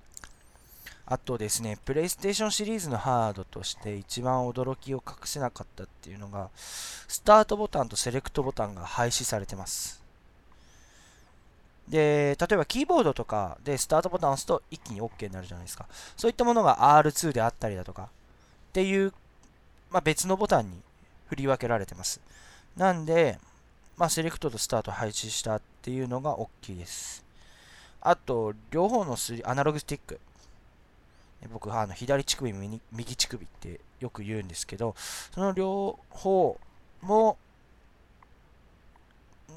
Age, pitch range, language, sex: 20-39, 105-170 Hz, Japanese, male